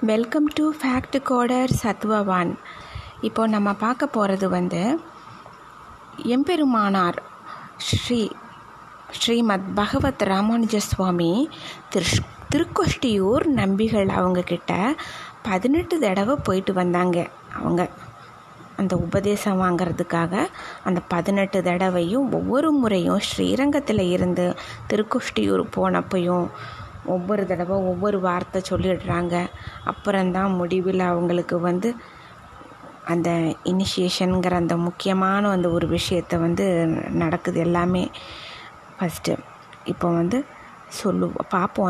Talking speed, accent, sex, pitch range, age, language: 85 wpm, native, female, 180-225 Hz, 20-39, Tamil